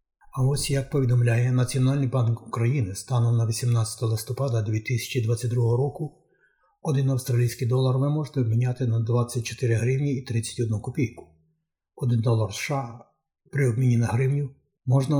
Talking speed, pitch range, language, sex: 130 wpm, 120-135 Hz, Ukrainian, male